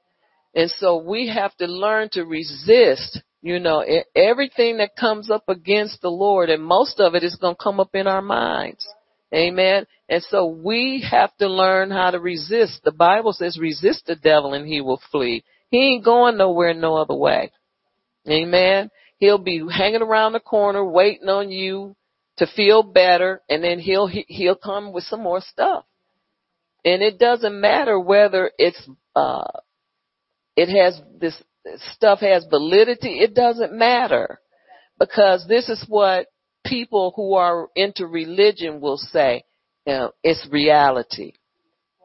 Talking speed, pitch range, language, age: 155 wpm, 175-215 Hz, English, 40-59